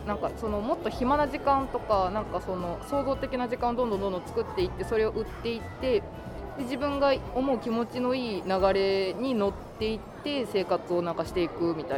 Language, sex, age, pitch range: Japanese, female, 20-39, 175-240 Hz